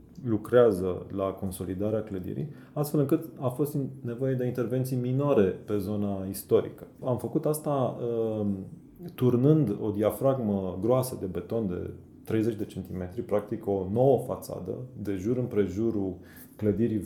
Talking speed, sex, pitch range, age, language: 125 wpm, male, 100-130 Hz, 30-49, Romanian